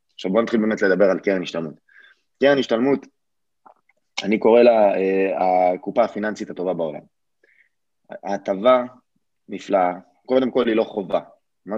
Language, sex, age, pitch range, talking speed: Hebrew, male, 20-39, 90-110 Hz, 125 wpm